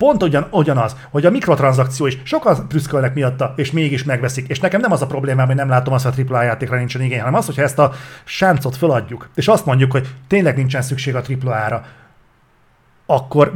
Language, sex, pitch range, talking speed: Hungarian, male, 130-160 Hz, 205 wpm